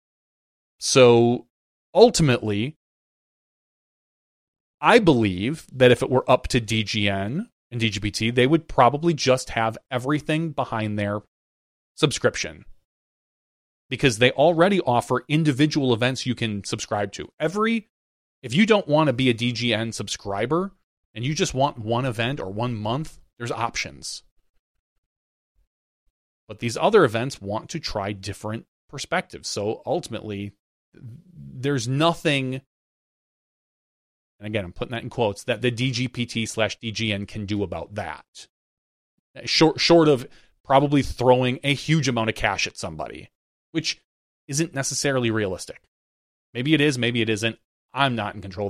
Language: English